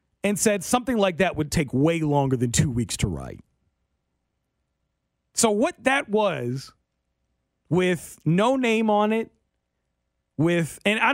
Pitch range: 130-190 Hz